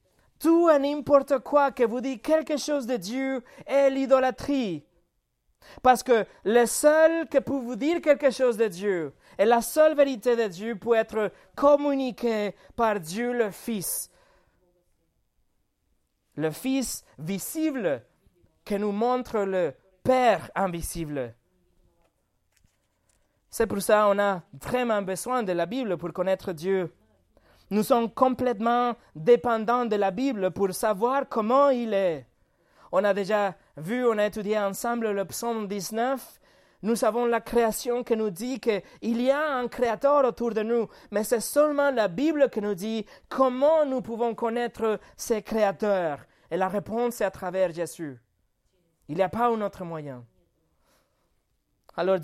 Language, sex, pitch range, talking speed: French, male, 195-255 Hz, 145 wpm